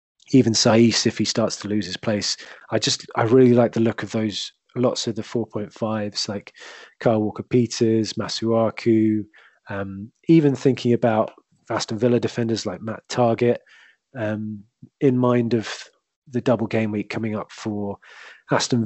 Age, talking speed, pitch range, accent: 20-39, 155 wpm, 105-120 Hz, British